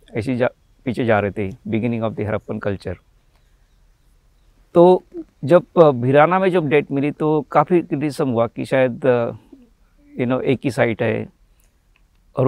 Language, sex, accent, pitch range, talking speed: Hindi, male, native, 110-145 Hz, 150 wpm